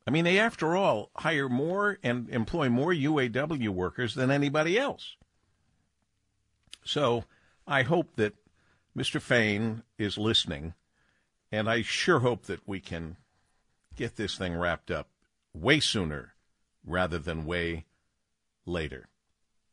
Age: 50-69